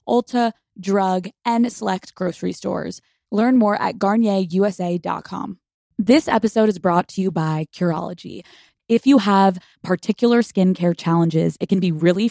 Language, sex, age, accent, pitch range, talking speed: English, female, 20-39, American, 170-215 Hz, 135 wpm